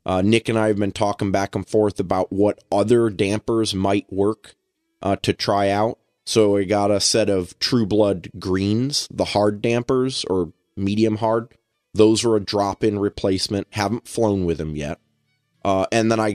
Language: English